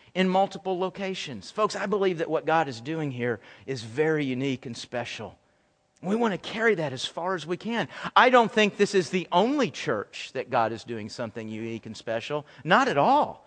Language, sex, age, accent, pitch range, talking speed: English, male, 40-59, American, 145-205 Hz, 205 wpm